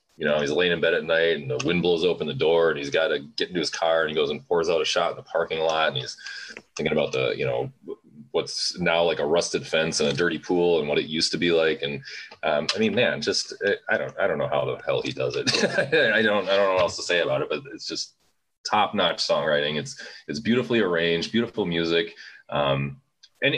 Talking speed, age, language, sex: 255 wpm, 30-49, English, male